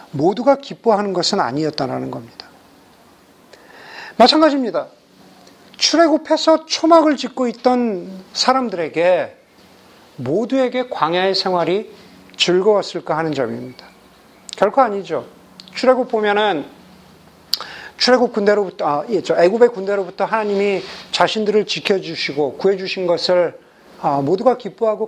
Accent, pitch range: native, 170-230 Hz